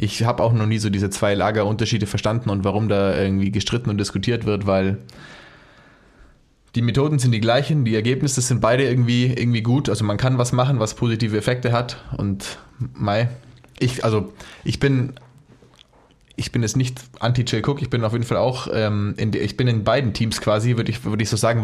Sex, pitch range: male, 105-120 Hz